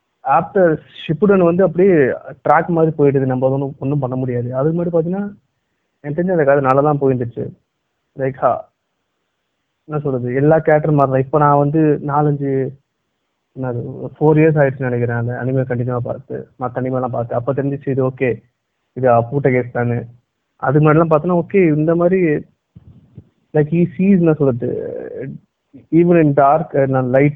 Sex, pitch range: male, 130-160 Hz